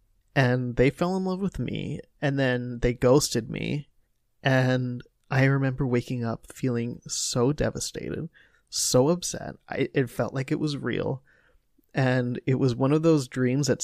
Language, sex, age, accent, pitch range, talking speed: English, male, 20-39, American, 120-155 Hz, 160 wpm